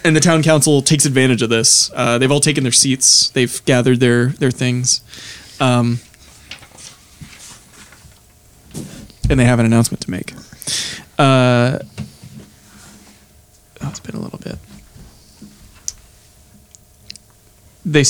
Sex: male